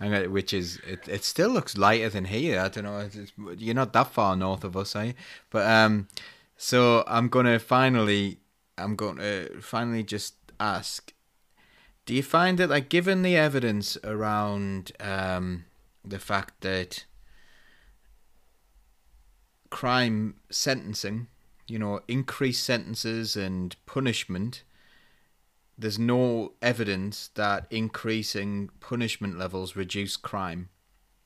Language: English